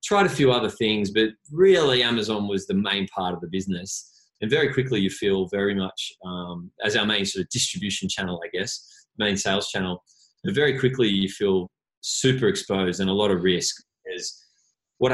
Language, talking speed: English, 195 wpm